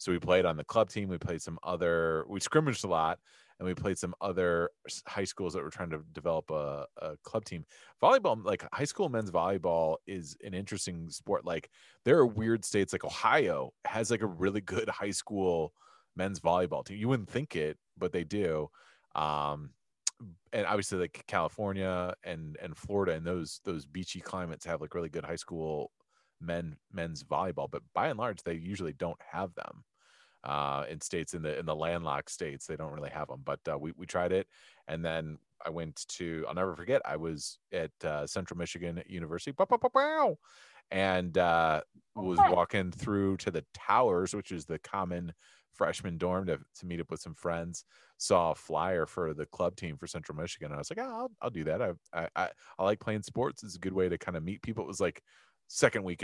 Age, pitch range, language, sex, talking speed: 30-49, 80-95 Hz, English, male, 210 wpm